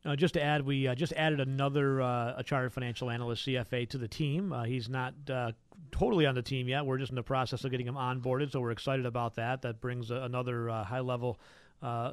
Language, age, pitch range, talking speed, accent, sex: English, 40-59, 115-145 Hz, 240 wpm, American, male